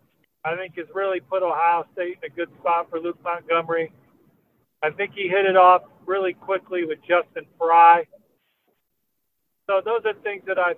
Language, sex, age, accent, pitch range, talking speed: English, male, 50-69, American, 175-245 Hz, 175 wpm